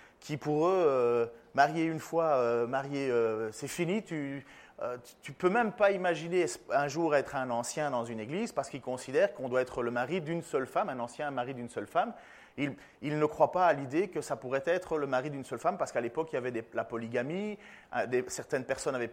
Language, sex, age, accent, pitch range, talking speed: French, male, 30-49, French, 140-210 Hz, 230 wpm